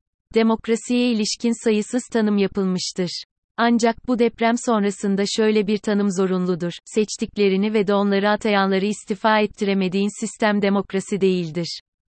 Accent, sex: native, female